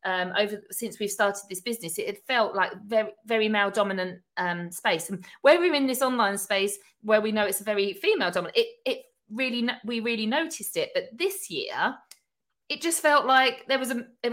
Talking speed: 210 wpm